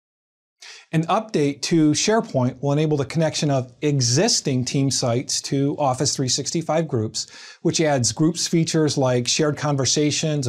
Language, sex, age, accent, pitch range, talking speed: English, male, 40-59, American, 130-165 Hz, 130 wpm